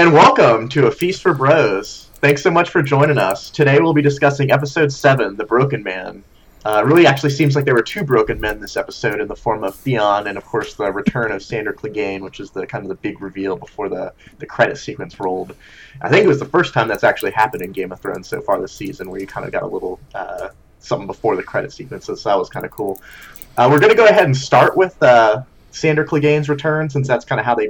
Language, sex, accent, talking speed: English, male, American, 255 wpm